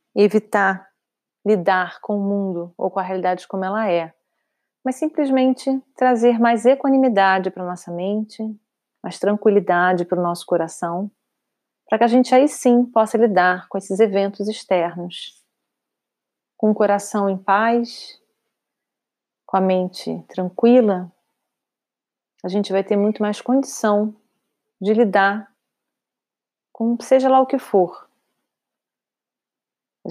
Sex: female